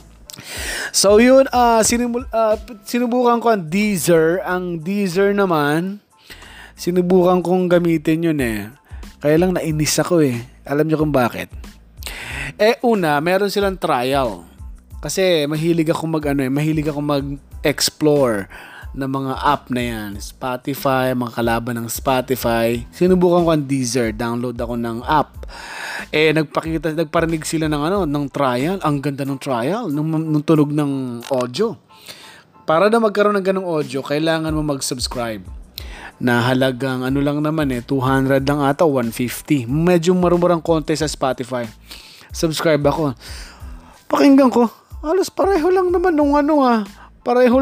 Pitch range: 135-190 Hz